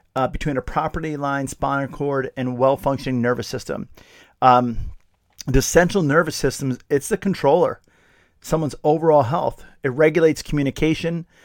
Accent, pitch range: American, 130-155 Hz